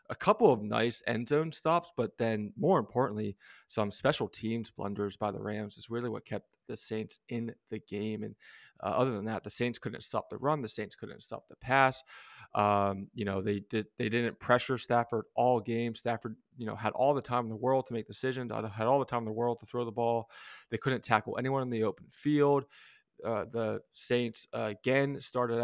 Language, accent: English, American